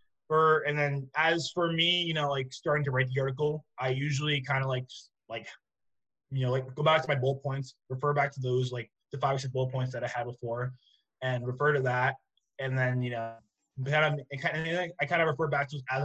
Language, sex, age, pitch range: English, male, 20-39, 125-140 Hz